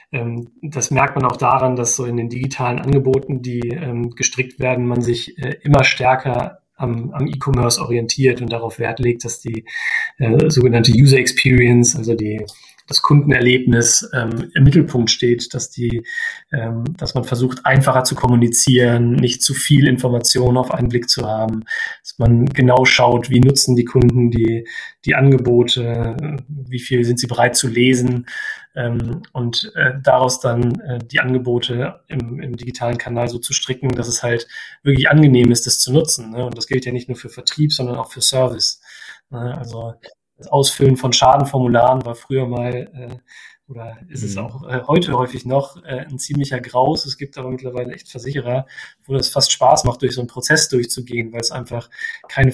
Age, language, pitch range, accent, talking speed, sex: 30-49, German, 120-135 Hz, German, 175 wpm, male